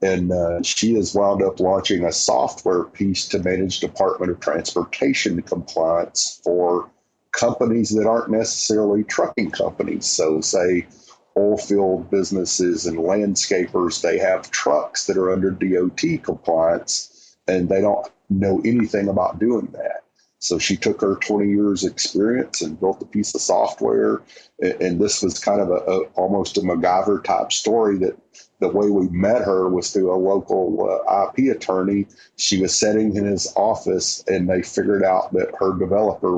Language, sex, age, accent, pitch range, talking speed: English, male, 50-69, American, 90-105 Hz, 160 wpm